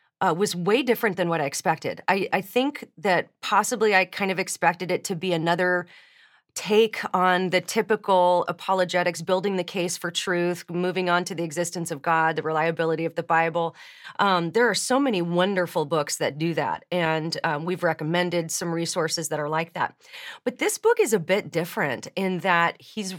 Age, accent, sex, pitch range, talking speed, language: 30-49, American, female, 170-205 Hz, 190 wpm, English